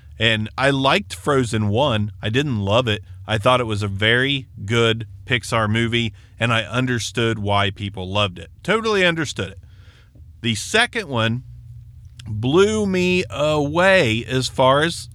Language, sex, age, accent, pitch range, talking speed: English, male, 30-49, American, 105-135 Hz, 145 wpm